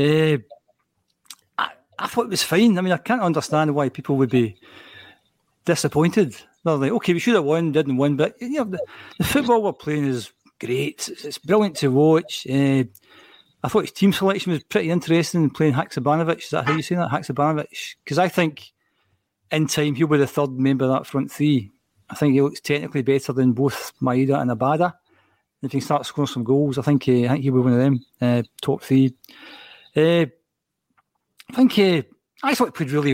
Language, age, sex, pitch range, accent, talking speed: English, 40-59, male, 135-175 Hz, British, 200 wpm